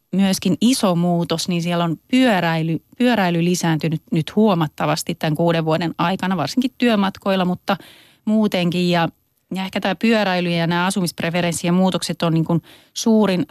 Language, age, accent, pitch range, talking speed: Finnish, 30-49, native, 165-190 Hz, 140 wpm